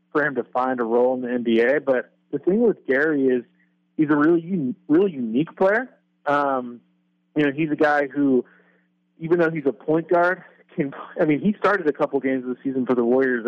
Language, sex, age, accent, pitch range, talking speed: English, male, 30-49, American, 125-160 Hz, 215 wpm